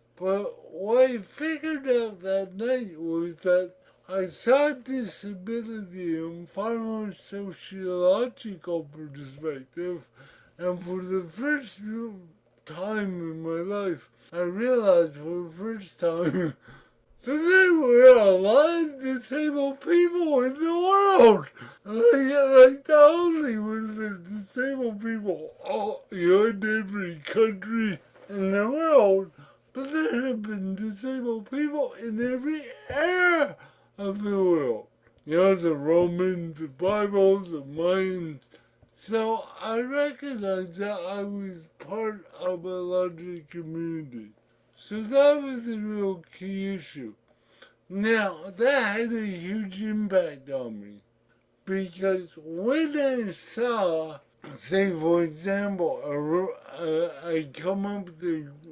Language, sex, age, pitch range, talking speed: English, male, 60-79, 170-245 Hz, 120 wpm